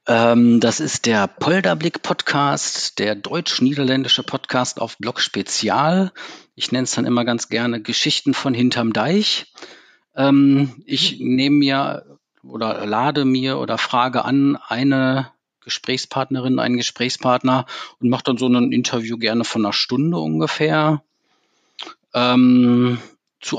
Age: 50-69